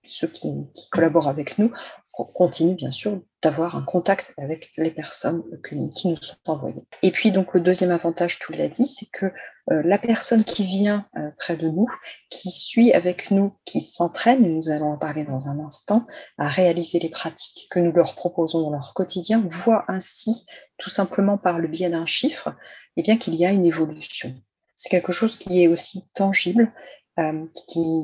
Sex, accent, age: female, French, 30-49